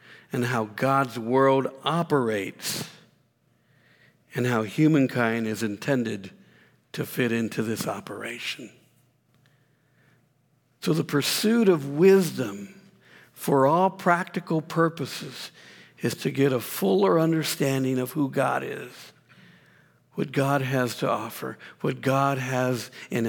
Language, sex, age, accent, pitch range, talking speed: English, male, 60-79, American, 125-165 Hz, 110 wpm